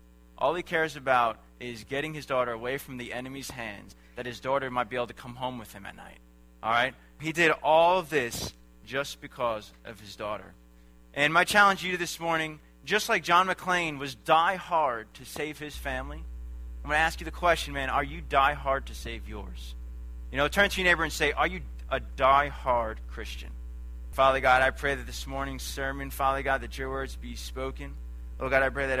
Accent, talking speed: American, 215 wpm